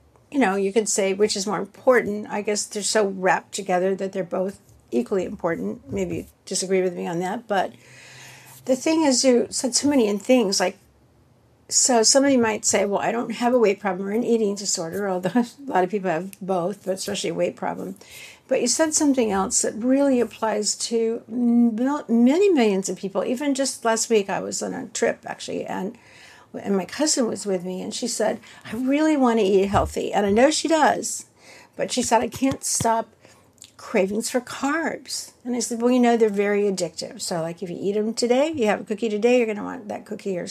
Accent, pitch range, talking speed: American, 195-245 Hz, 215 wpm